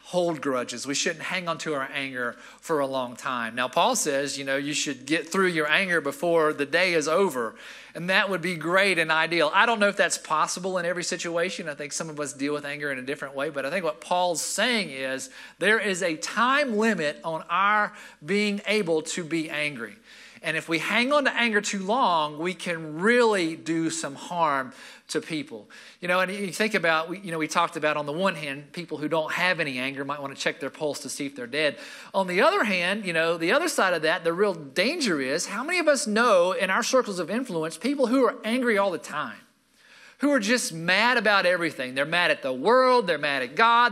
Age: 40-59